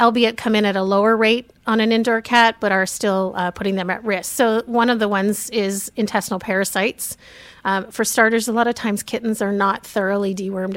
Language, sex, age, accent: English, female, 30-49, American